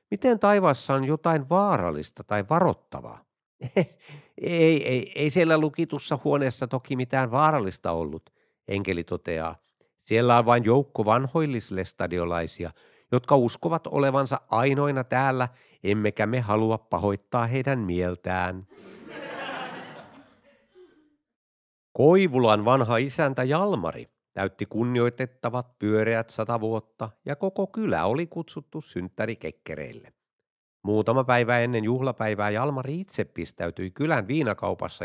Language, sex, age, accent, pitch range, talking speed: Finnish, male, 50-69, native, 100-140 Hz, 100 wpm